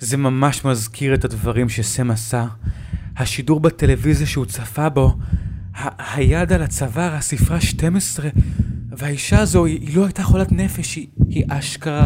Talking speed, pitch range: 130 wpm, 100-135 Hz